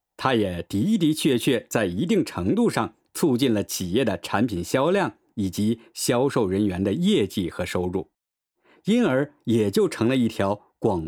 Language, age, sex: Chinese, 50-69, male